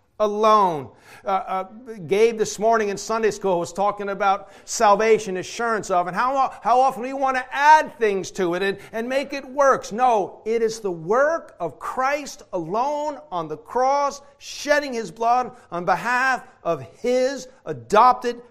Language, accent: English, American